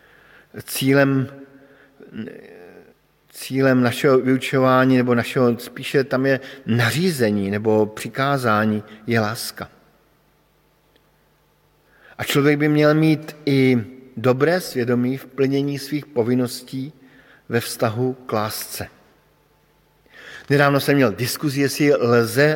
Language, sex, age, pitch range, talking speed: Slovak, male, 50-69, 115-140 Hz, 95 wpm